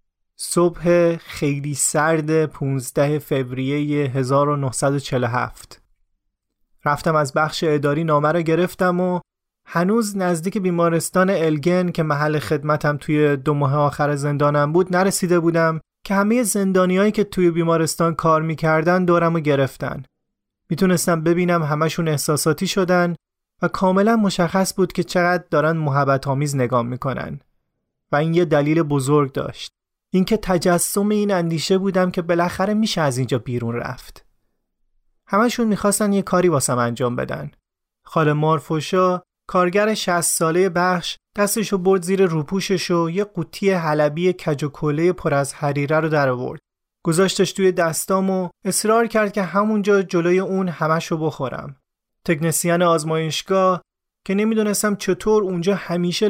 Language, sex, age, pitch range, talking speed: Persian, male, 30-49, 150-185 Hz, 130 wpm